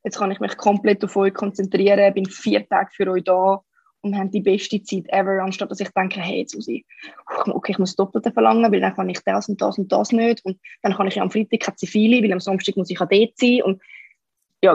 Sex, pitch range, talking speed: female, 190-215 Hz, 250 wpm